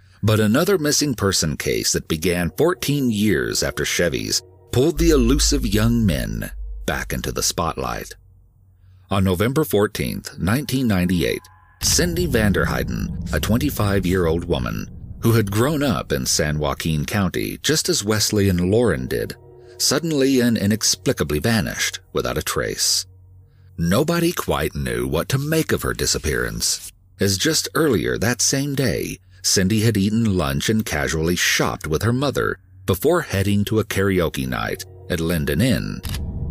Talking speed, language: 140 wpm, English